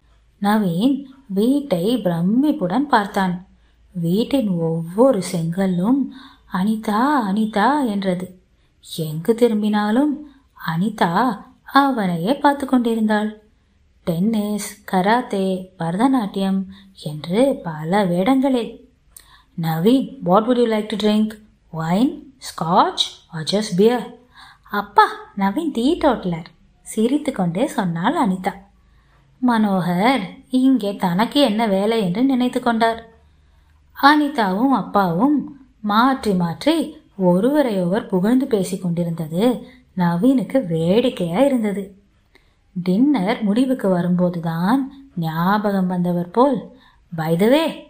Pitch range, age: 185-255 Hz, 20-39